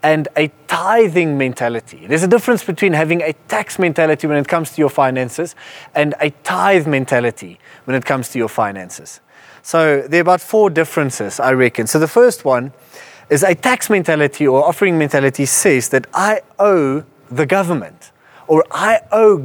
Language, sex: English, male